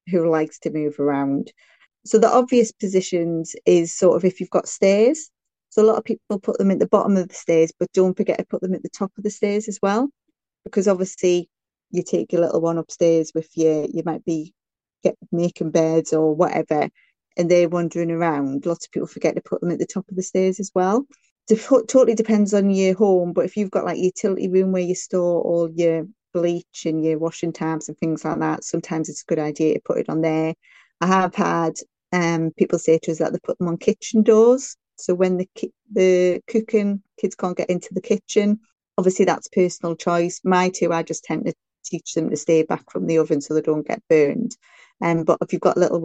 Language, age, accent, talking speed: English, 30-49, British, 230 wpm